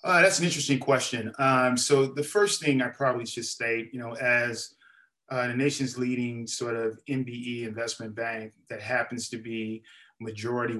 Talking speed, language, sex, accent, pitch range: 170 wpm, English, male, American, 110-125 Hz